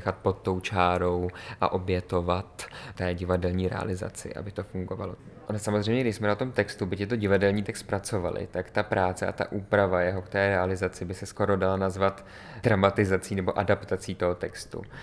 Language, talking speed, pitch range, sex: Czech, 170 wpm, 90-105 Hz, male